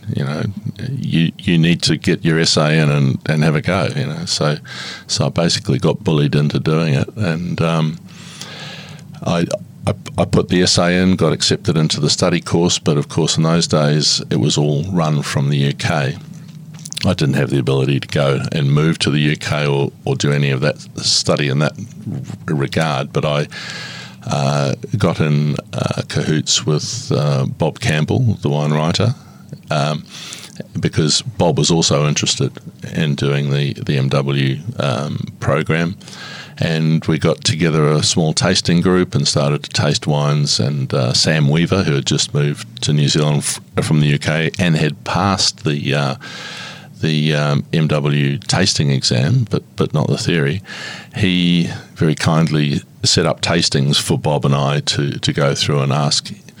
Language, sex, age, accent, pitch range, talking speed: English, male, 50-69, Australian, 70-85 Hz, 170 wpm